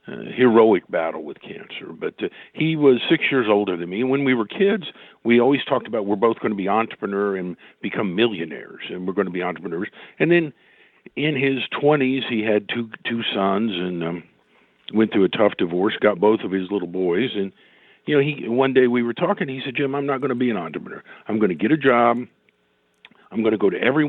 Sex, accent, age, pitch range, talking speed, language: male, American, 50-69, 105-130 Hz, 225 wpm, English